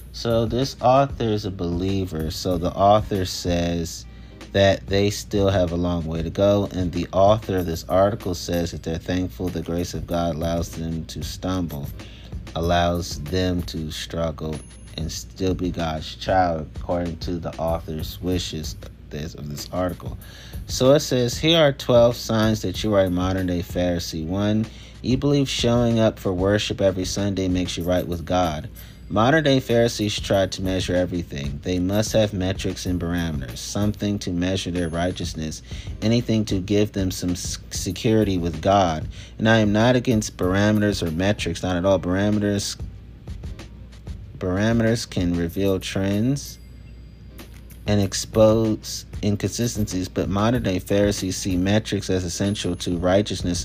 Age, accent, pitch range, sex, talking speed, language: 30-49, American, 85-105 Hz, male, 150 wpm, English